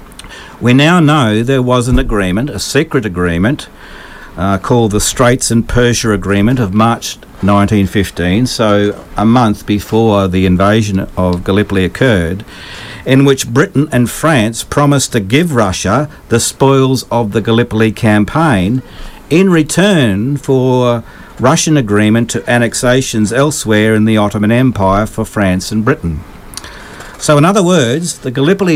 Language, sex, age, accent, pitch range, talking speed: English, male, 50-69, Australian, 105-135 Hz, 140 wpm